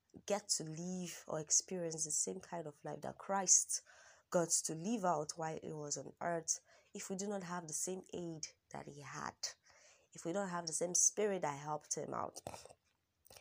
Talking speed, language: 195 wpm, English